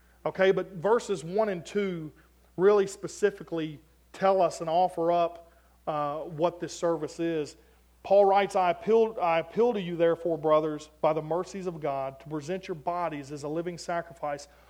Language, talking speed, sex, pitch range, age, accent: English, 165 wpm, male, 155-195 Hz, 40-59, American